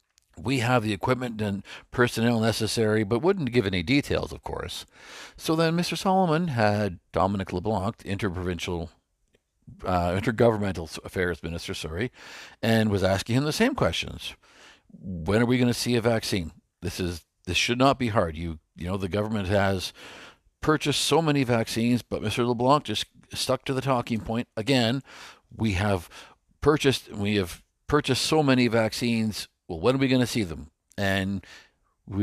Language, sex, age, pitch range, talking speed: English, male, 50-69, 95-125 Hz, 165 wpm